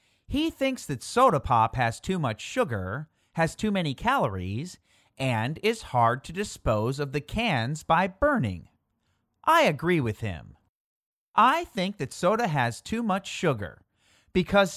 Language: English